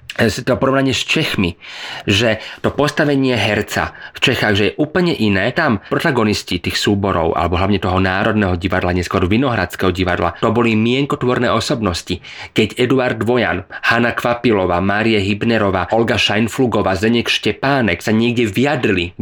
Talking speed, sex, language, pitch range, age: 140 wpm, male, Slovak, 100-125 Hz, 30-49